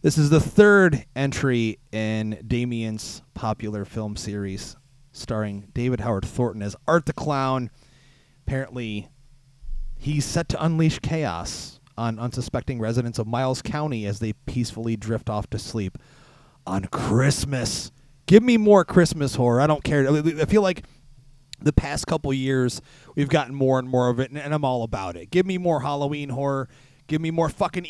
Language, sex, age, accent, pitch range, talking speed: English, male, 30-49, American, 115-145 Hz, 165 wpm